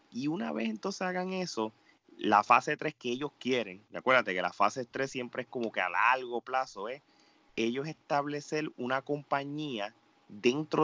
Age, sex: 30-49, male